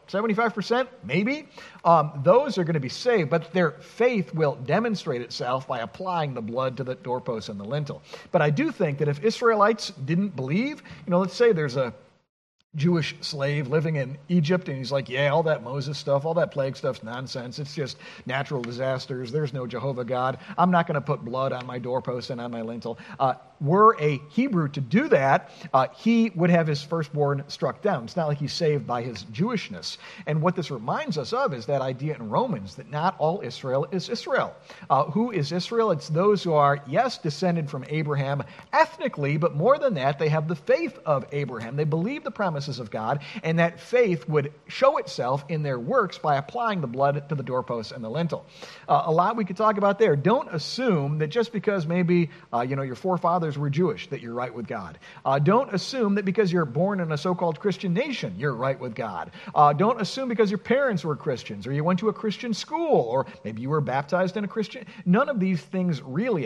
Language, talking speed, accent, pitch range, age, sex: English, 215 wpm, American, 140-190 Hz, 50-69, male